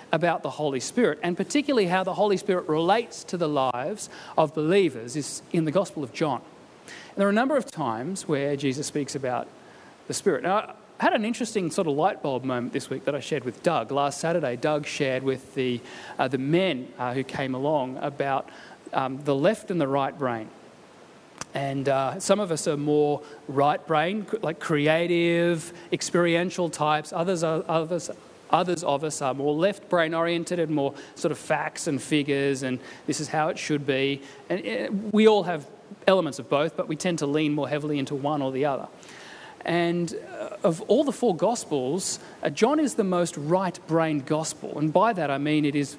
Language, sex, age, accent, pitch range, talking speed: English, male, 40-59, Australian, 145-185 Hz, 195 wpm